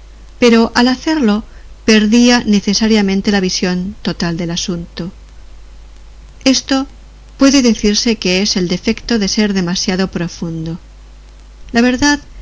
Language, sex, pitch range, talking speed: Spanish, female, 175-225 Hz, 110 wpm